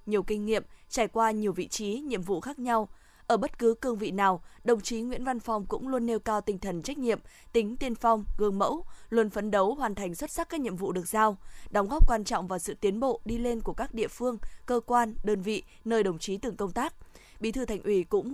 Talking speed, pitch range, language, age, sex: 250 wpm, 200-240 Hz, Vietnamese, 20-39, female